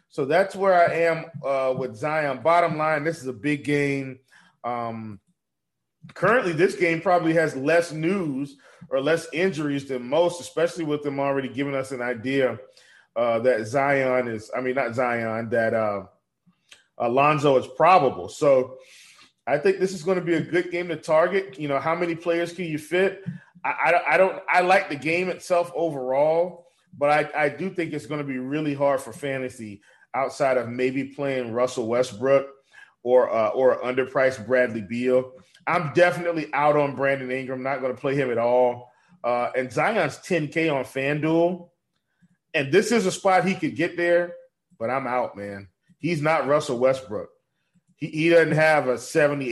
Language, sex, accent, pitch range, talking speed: English, male, American, 125-170 Hz, 175 wpm